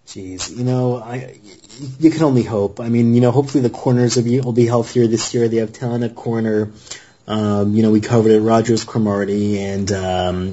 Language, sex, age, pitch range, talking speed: English, male, 30-49, 105-125 Hz, 210 wpm